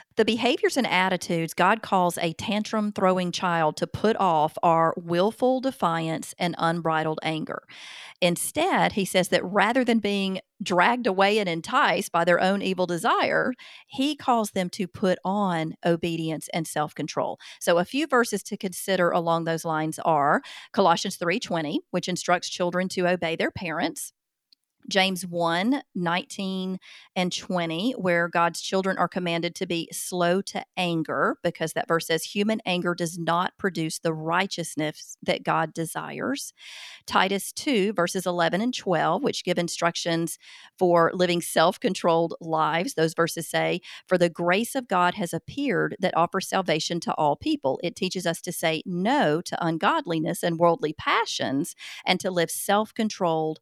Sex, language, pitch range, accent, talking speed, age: female, English, 165-200 Hz, American, 150 wpm, 40-59